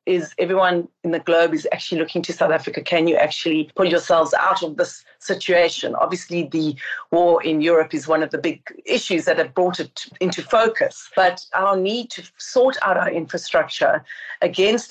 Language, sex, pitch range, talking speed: English, female, 170-210 Hz, 185 wpm